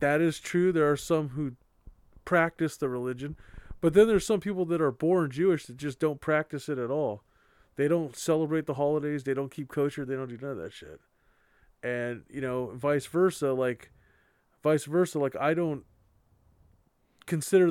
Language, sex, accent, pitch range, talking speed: English, male, American, 130-165 Hz, 185 wpm